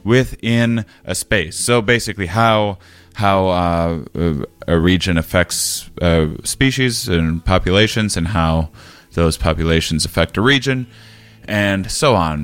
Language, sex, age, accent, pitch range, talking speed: English, male, 30-49, American, 85-115 Hz, 120 wpm